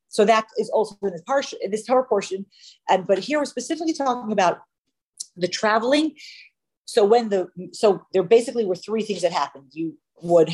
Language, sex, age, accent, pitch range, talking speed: English, female, 40-59, American, 175-245 Hz, 180 wpm